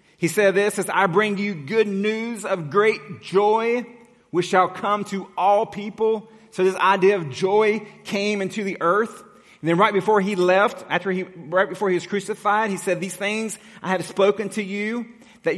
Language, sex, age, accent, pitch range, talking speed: English, male, 30-49, American, 165-205 Hz, 195 wpm